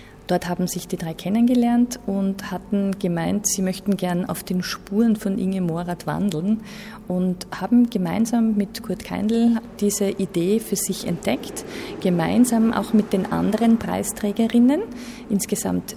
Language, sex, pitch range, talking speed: German, female, 180-220 Hz, 140 wpm